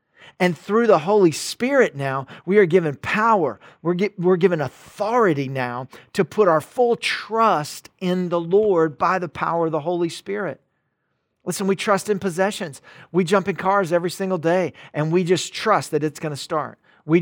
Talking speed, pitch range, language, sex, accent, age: 180 wpm, 155-195 Hz, English, male, American, 40-59